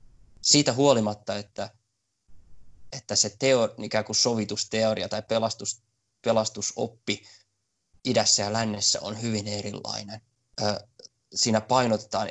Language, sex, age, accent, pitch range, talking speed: Finnish, male, 20-39, native, 105-120 Hz, 80 wpm